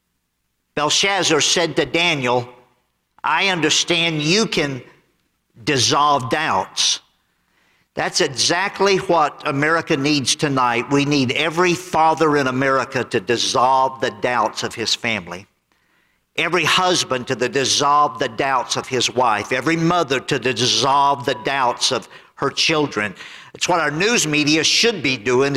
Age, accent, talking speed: 50-69, American, 130 wpm